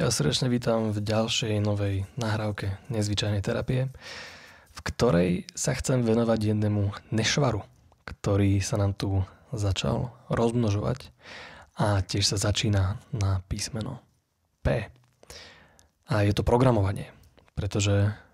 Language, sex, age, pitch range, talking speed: Slovak, male, 20-39, 100-120 Hz, 110 wpm